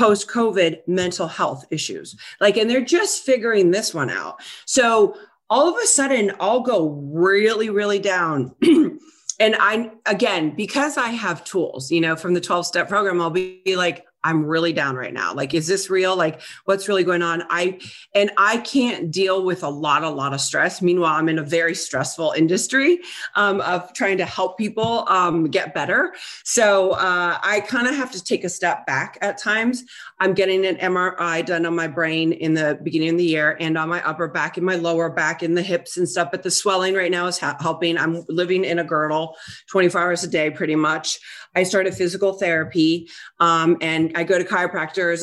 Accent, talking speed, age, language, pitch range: American, 200 wpm, 30-49, English, 165-200 Hz